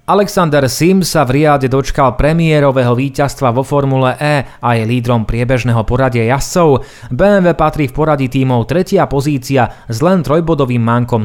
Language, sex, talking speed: Slovak, male, 150 wpm